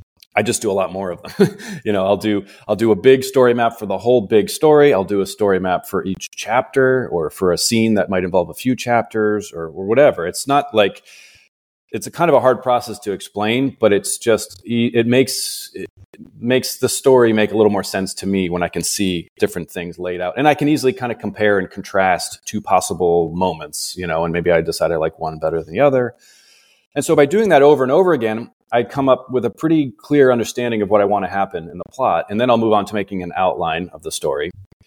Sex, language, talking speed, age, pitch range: male, English, 245 wpm, 30-49, 95-125 Hz